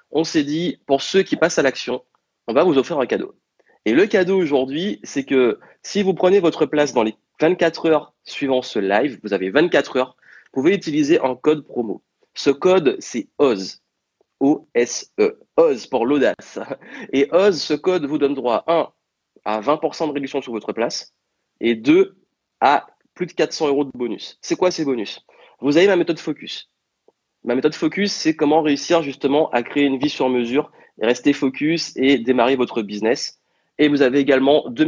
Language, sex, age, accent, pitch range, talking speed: French, male, 30-49, French, 125-160 Hz, 190 wpm